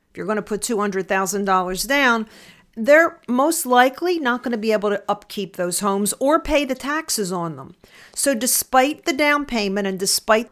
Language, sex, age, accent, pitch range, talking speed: English, female, 50-69, American, 200-260 Hz, 175 wpm